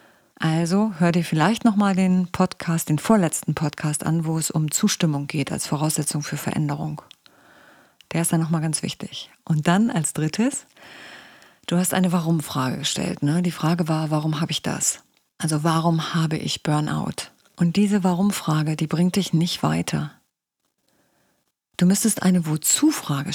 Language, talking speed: German, 150 wpm